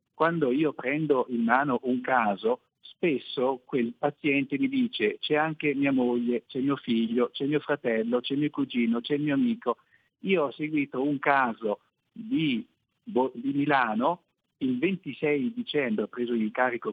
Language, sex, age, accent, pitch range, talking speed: Italian, male, 50-69, native, 125-180 Hz, 155 wpm